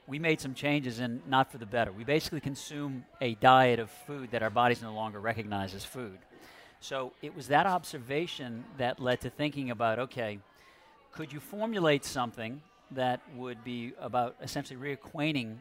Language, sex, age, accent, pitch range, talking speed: English, male, 50-69, American, 115-135 Hz, 175 wpm